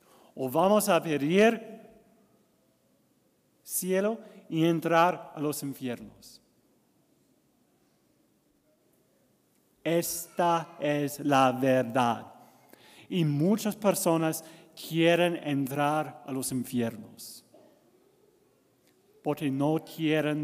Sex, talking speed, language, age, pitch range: male, 75 wpm, English, 40-59, 145-190 Hz